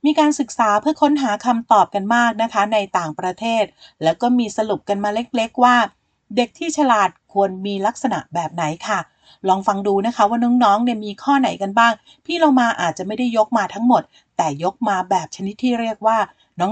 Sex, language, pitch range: female, Thai, 190-245 Hz